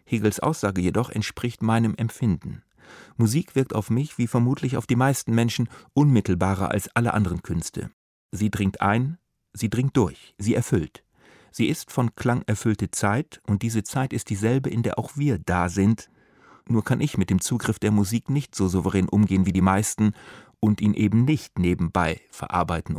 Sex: male